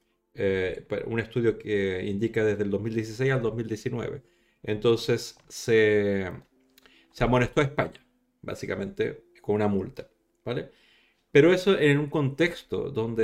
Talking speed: 120 wpm